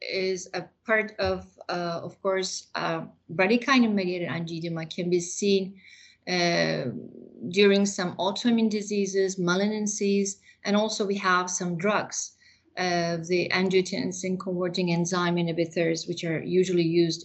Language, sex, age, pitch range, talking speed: English, female, 30-49, 170-195 Hz, 120 wpm